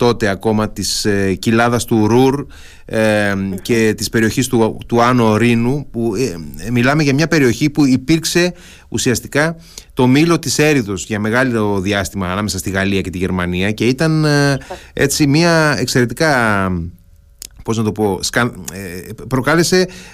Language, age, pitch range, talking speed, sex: Greek, 30-49, 110-145 Hz, 145 wpm, male